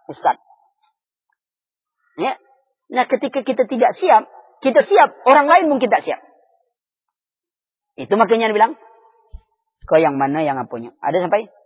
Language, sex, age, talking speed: Malay, female, 30-49, 130 wpm